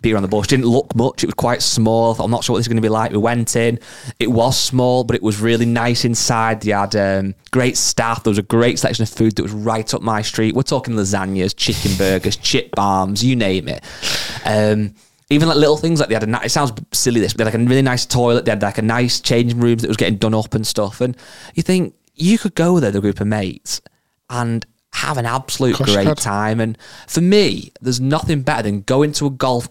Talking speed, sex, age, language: 250 wpm, male, 20-39, English